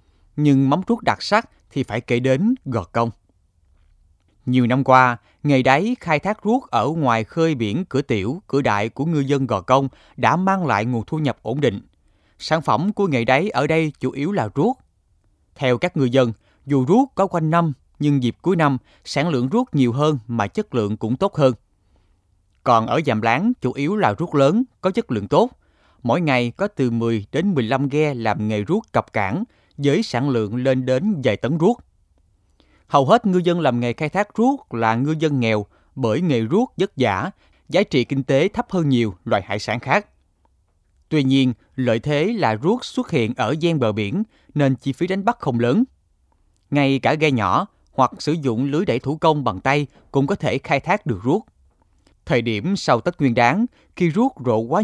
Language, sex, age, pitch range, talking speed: Vietnamese, male, 20-39, 115-160 Hz, 205 wpm